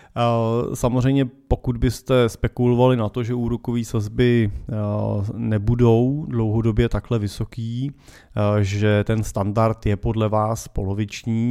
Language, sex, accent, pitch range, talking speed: Czech, male, native, 105-120 Hz, 105 wpm